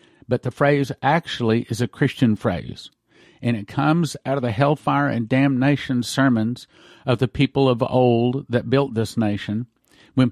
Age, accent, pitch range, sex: 50-69, American, 120-135 Hz, male